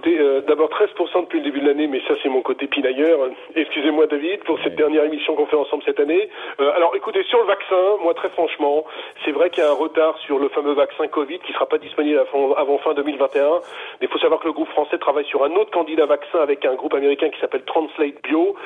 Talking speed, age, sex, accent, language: 240 wpm, 40-59, male, French, French